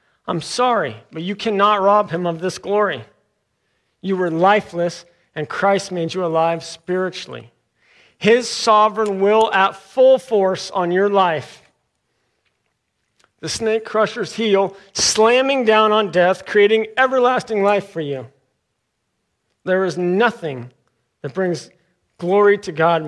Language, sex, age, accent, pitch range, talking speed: English, male, 50-69, American, 165-210 Hz, 125 wpm